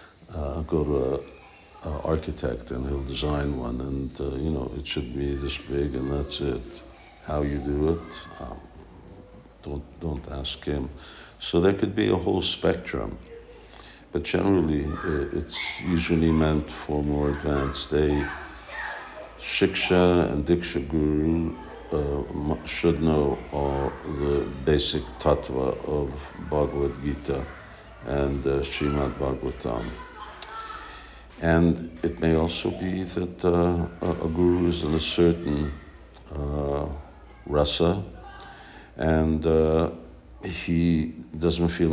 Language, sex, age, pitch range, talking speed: English, male, 60-79, 70-80 Hz, 125 wpm